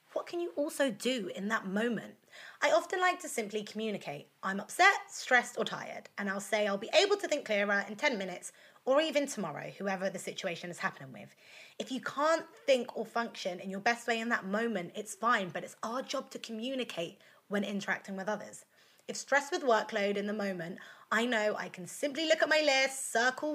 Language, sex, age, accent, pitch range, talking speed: English, female, 20-39, British, 190-265 Hz, 210 wpm